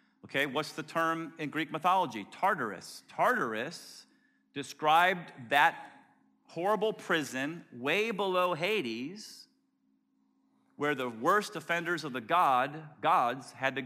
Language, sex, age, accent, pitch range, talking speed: English, male, 40-59, American, 150-230 Hz, 110 wpm